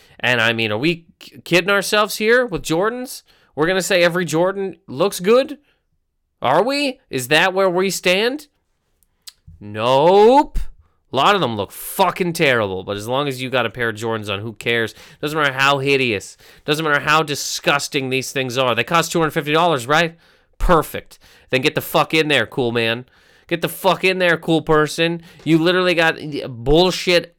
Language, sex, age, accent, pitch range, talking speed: English, male, 30-49, American, 125-185 Hz, 175 wpm